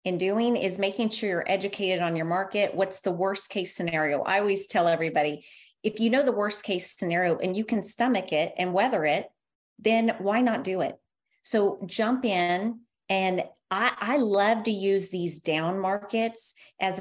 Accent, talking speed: American, 185 wpm